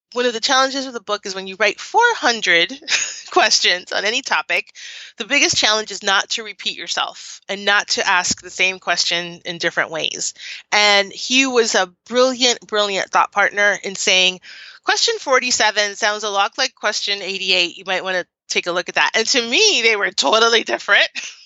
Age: 30-49